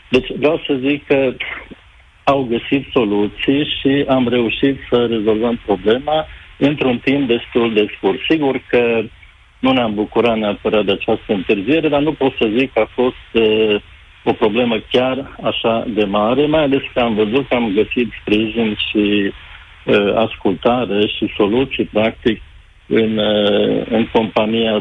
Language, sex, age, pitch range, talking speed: Romanian, male, 60-79, 105-125 Hz, 150 wpm